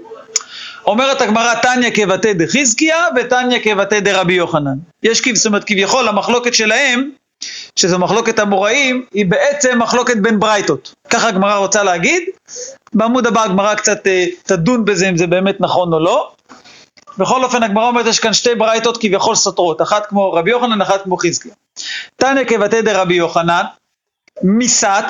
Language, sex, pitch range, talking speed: Hebrew, male, 185-235 Hz, 155 wpm